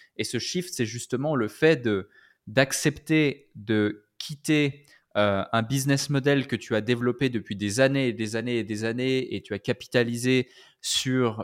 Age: 20-39